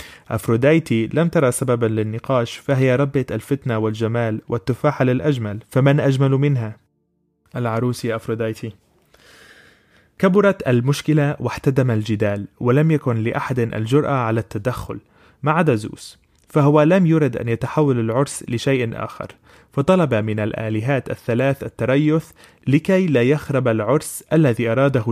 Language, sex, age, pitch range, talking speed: Arabic, male, 20-39, 110-140 Hz, 115 wpm